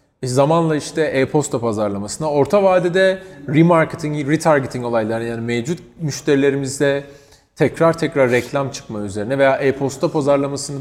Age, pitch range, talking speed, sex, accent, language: 40-59, 130-175 Hz, 110 wpm, male, native, Turkish